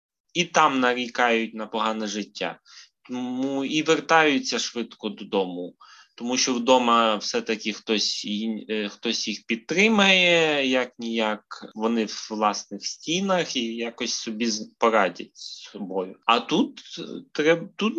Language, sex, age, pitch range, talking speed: Ukrainian, male, 20-39, 115-155 Hz, 115 wpm